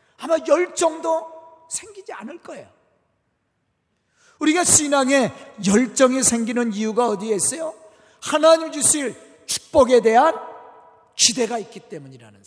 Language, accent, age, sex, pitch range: Korean, native, 40-59, male, 230-305 Hz